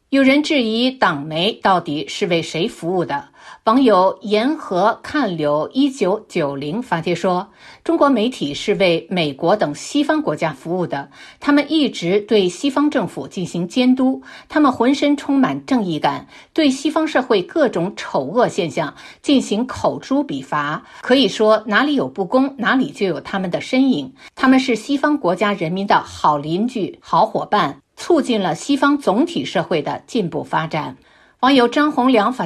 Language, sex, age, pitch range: Chinese, female, 50-69, 180-275 Hz